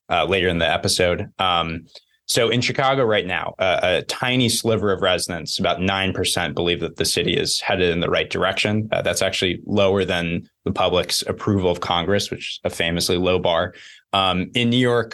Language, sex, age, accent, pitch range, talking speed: English, male, 20-39, American, 85-105 Hz, 195 wpm